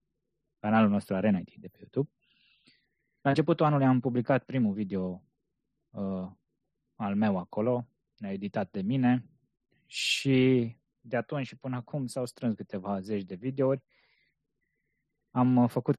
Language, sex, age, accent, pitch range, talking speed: Romanian, male, 20-39, native, 105-140 Hz, 130 wpm